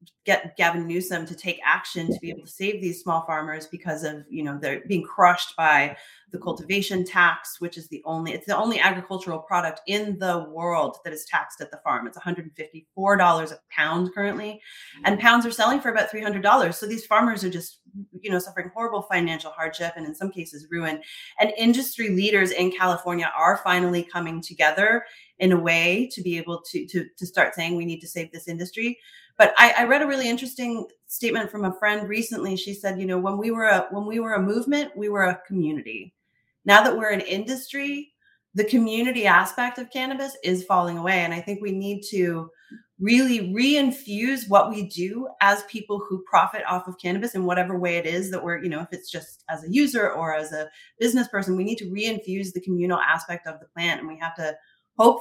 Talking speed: 215 wpm